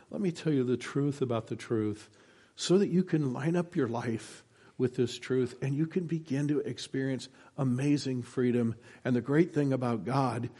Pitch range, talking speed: 120-145 Hz, 190 wpm